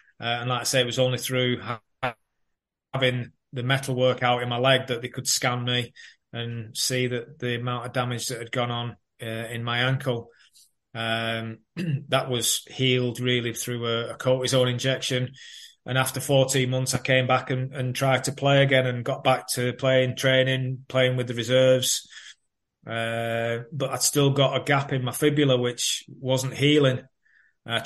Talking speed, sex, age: 180 wpm, male, 20-39